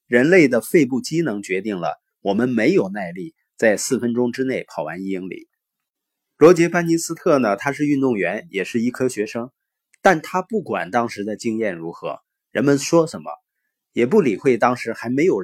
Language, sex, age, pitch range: Chinese, male, 20-39, 105-155 Hz